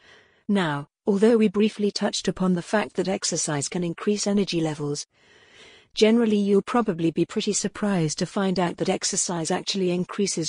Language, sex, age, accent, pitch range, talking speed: English, female, 50-69, British, 170-205 Hz, 155 wpm